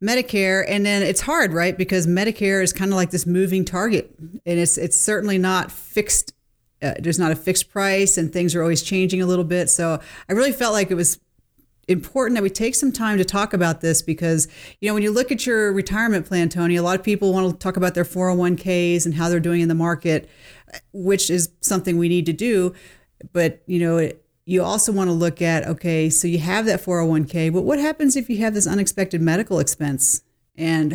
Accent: American